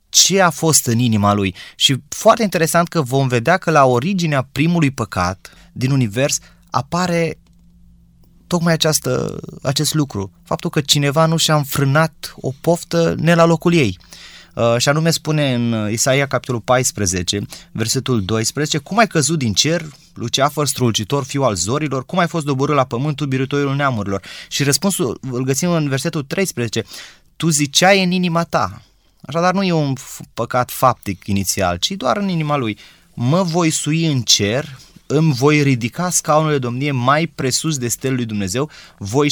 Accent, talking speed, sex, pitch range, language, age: native, 160 wpm, male, 120-160 Hz, Romanian, 20-39